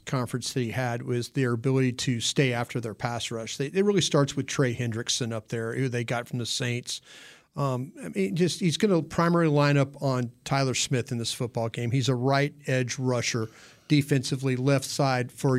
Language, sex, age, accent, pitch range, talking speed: English, male, 40-59, American, 125-145 Hz, 210 wpm